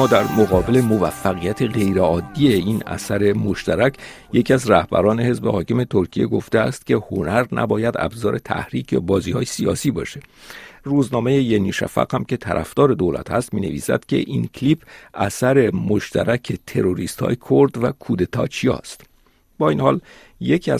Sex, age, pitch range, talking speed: male, 50-69, 100-125 Hz, 140 wpm